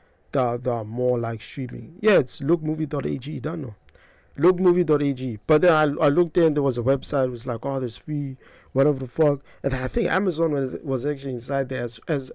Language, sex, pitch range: English, male, 125-155 Hz